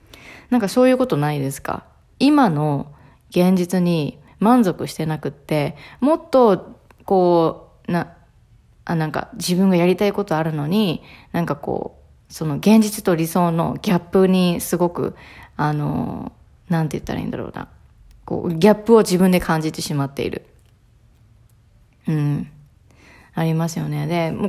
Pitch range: 150-200 Hz